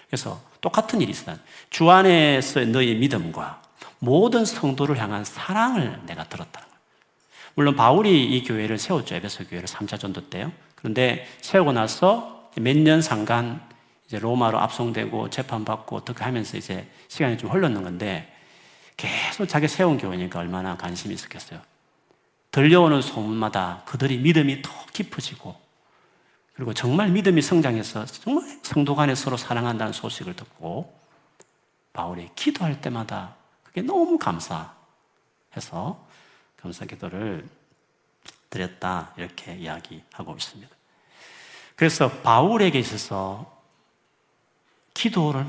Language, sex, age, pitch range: Korean, male, 40-59, 110-170 Hz